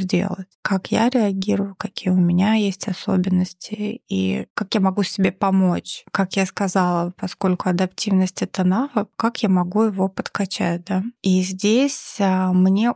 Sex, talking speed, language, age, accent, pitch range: female, 145 wpm, Russian, 20-39, native, 185-210 Hz